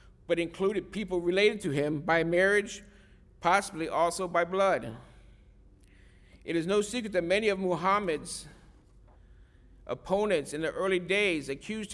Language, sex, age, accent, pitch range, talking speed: English, male, 50-69, American, 160-195 Hz, 130 wpm